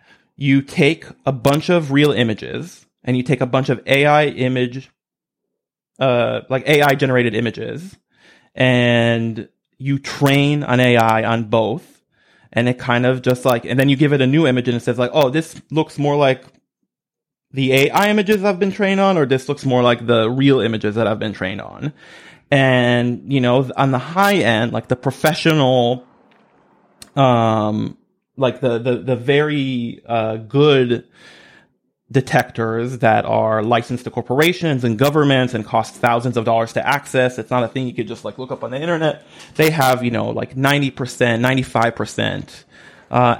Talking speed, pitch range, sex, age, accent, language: 170 wpm, 120-140 Hz, male, 30-49, American, English